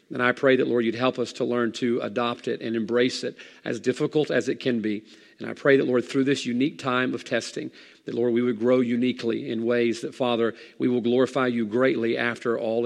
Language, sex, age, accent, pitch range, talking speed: English, male, 40-59, American, 125-150 Hz, 235 wpm